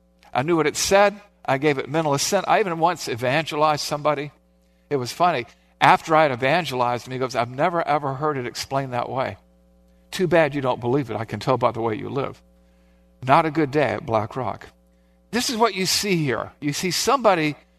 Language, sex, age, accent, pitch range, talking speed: English, male, 50-69, American, 105-170 Hz, 215 wpm